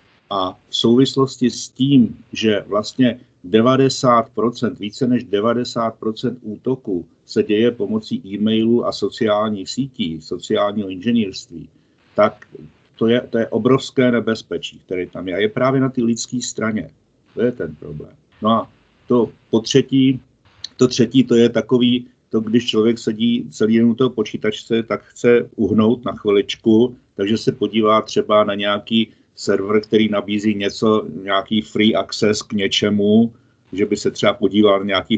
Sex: male